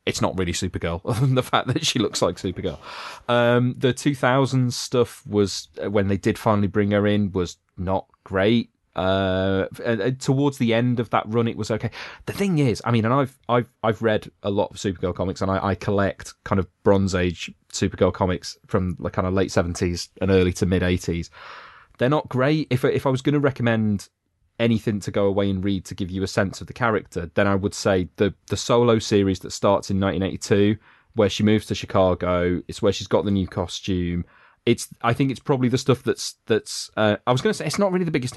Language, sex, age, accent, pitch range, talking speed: English, male, 30-49, British, 95-120 Hz, 225 wpm